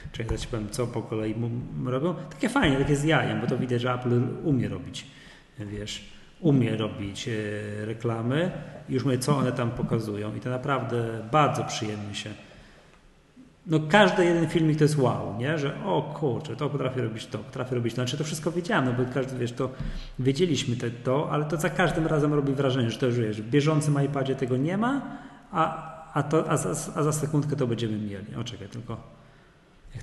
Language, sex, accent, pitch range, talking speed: Polish, male, native, 115-140 Hz, 190 wpm